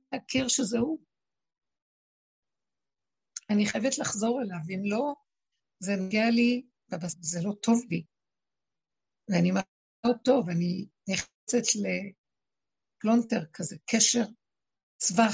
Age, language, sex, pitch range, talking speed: 60-79, Hebrew, female, 195-245 Hz, 100 wpm